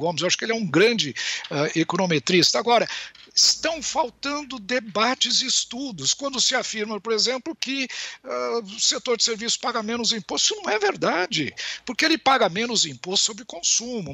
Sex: male